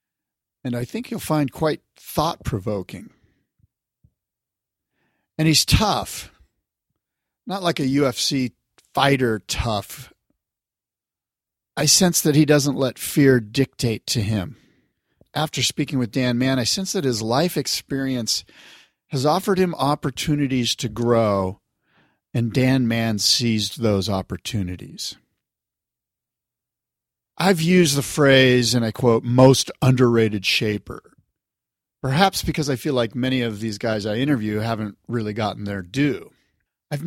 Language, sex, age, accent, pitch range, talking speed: English, male, 50-69, American, 110-135 Hz, 125 wpm